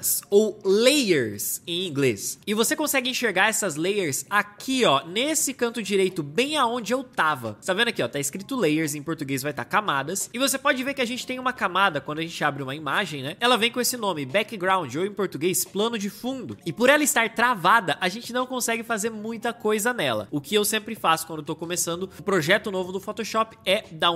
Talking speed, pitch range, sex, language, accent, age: 225 wpm, 180-245 Hz, male, Portuguese, Brazilian, 20-39